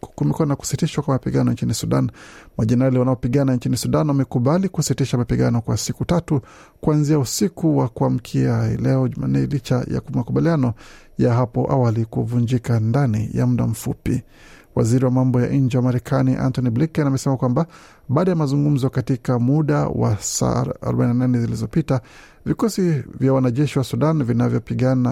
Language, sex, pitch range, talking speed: Swahili, male, 115-140 Hz, 140 wpm